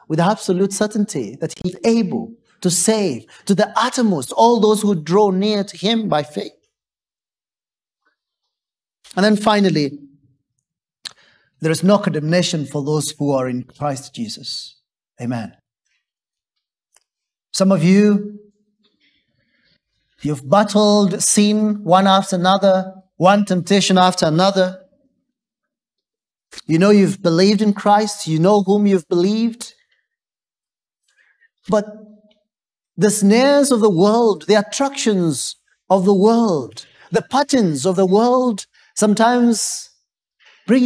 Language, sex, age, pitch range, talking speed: English, male, 40-59, 175-220 Hz, 115 wpm